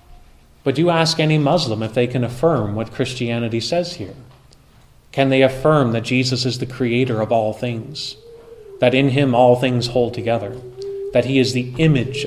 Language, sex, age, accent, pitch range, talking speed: English, male, 30-49, American, 115-140 Hz, 180 wpm